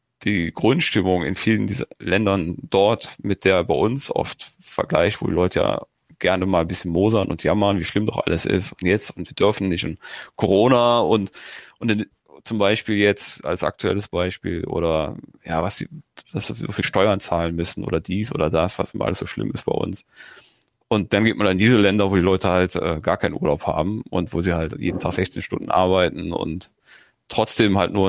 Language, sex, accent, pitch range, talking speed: German, male, German, 90-110 Hz, 210 wpm